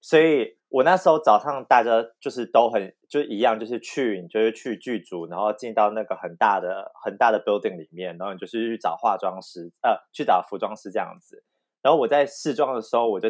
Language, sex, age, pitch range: Chinese, male, 30-49, 110-160 Hz